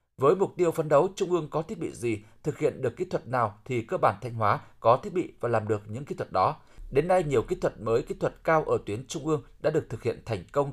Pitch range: 120-185 Hz